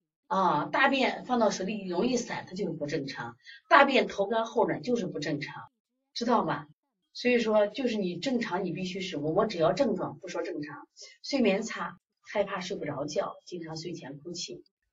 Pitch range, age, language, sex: 160-240 Hz, 30-49, Chinese, female